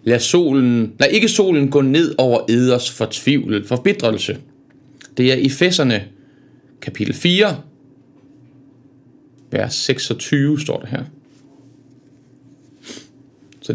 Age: 30-49